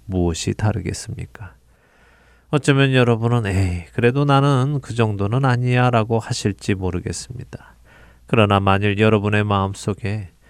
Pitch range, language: 95-125 Hz, Korean